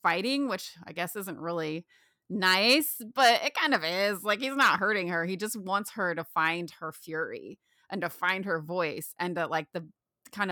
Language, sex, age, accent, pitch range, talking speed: English, female, 30-49, American, 170-215 Hz, 200 wpm